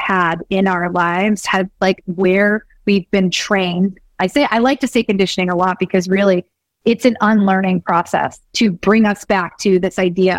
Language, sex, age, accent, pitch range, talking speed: English, female, 30-49, American, 190-230 Hz, 185 wpm